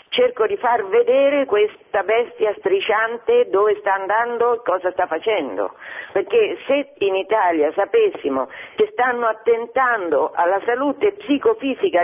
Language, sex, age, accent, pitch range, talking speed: Italian, female, 50-69, native, 185-260 Hz, 125 wpm